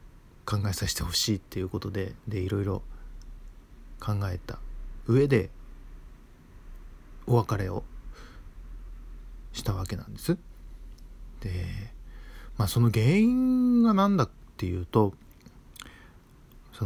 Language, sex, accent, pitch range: Japanese, male, native, 95-130 Hz